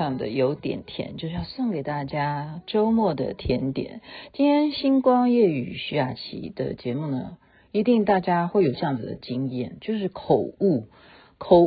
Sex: female